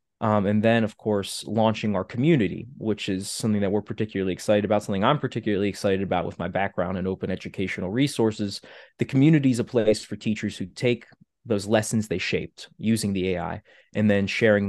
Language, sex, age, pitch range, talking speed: English, male, 20-39, 95-115 Hz, 190 wpm